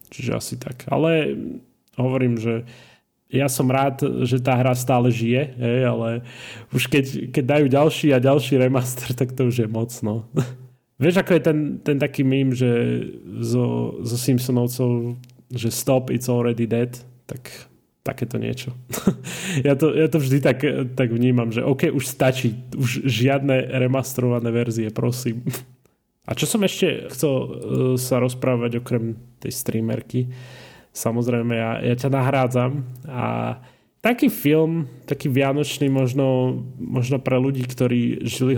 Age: 20-39